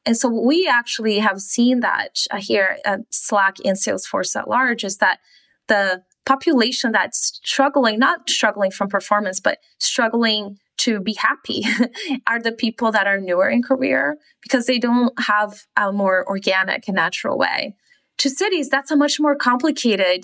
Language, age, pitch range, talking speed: English, 20-39, 195-255 Hz, 160 wpm